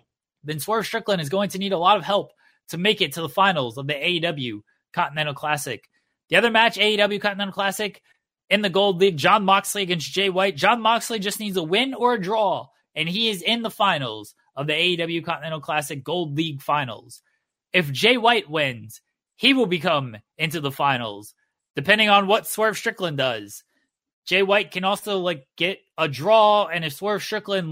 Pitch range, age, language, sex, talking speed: 155-210 Hz, 20-39, English, male, 190 wpm